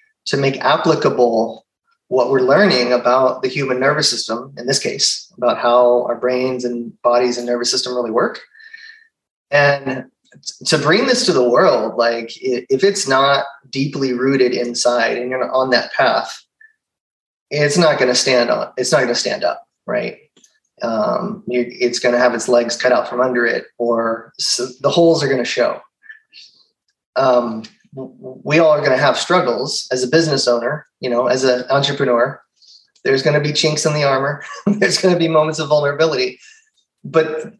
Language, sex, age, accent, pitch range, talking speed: English, male, 30-49, American, 125-165 Hz, 175 wpm